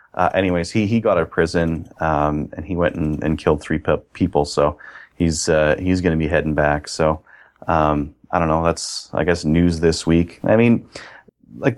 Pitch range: 80-105 Hz